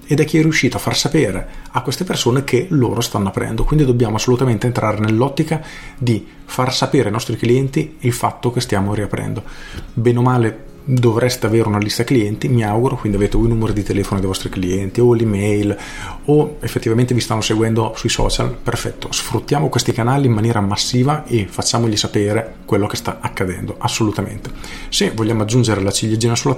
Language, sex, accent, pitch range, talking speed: Italian, male, native, 105-125 Hz, 180 wpm